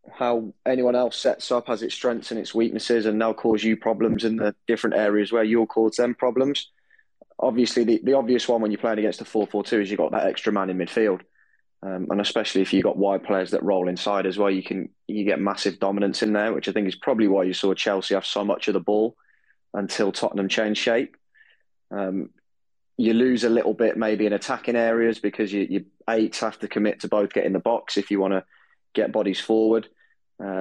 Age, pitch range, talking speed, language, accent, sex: 20-39, 100-115 Hz, 225 wpm, English, British, male